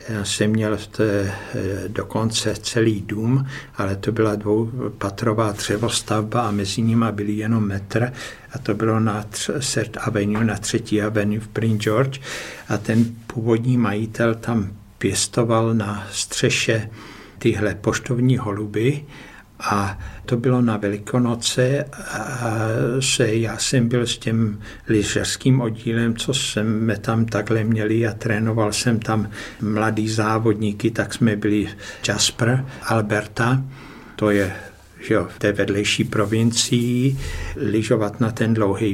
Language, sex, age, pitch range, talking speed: Czech, male, 60-79, 105-115 Hz, 125 wpm